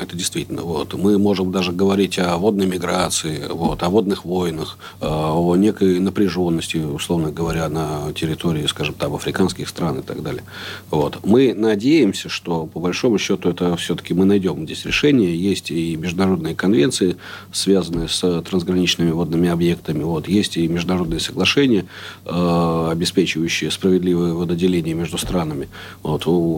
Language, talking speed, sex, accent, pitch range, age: Russian, 130 wpm, male, native, 80-95 Hz, 40-59